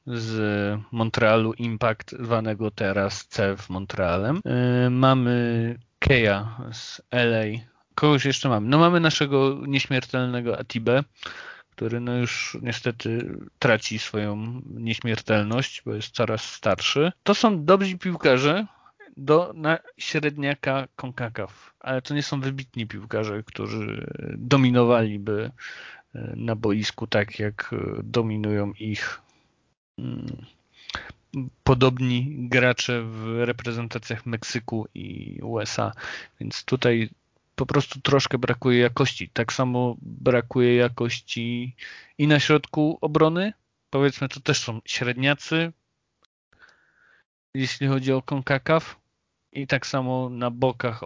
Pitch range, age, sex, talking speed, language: 115-135 Hz, 40-59, male, 105 wpm, Polish